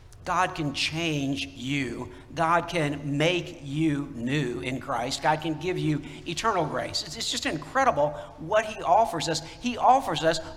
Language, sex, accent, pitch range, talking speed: English, male, American, 145-180 Hz, 155 wpm